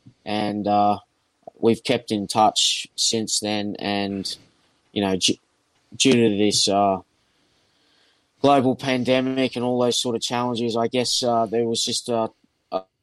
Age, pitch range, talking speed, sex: 20-39, 100-115 Hz, 145 wpm, male